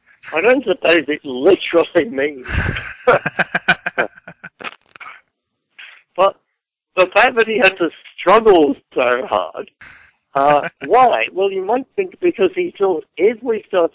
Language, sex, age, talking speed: English, male, 60-79, 120 wpm